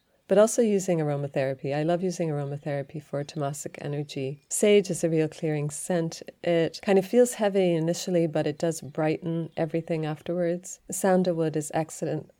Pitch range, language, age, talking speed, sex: 150-175 Hz, English, 30-49, 155 wpm, female